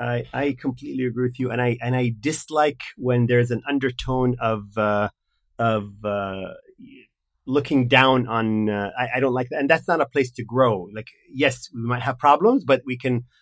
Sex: male